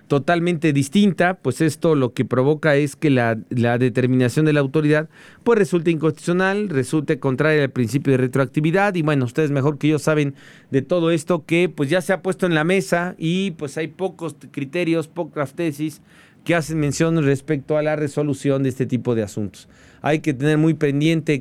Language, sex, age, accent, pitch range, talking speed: Spanish, male, 40-59, Mexican, 140-170 Hz, 190 wpm